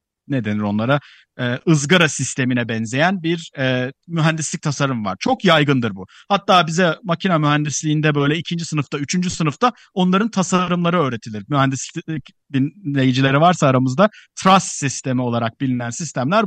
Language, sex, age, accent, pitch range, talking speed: Turkish, male, 50-69, native, 135-185 Hz, 130 wpm